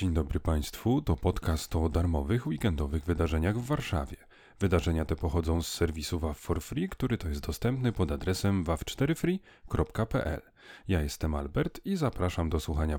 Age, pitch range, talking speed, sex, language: 30-49, 85-130 Hz, 145 wpm, male, Polish